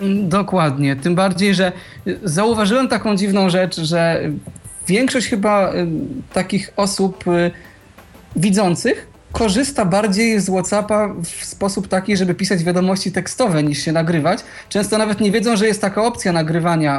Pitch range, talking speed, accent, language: 155-200 Hz, 130 wpm, native, Polish